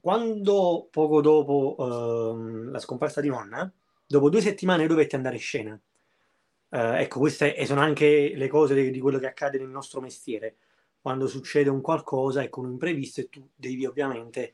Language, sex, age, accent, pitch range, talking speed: Italian, male, 20-39, native, 130-155 Hz, 170 wpm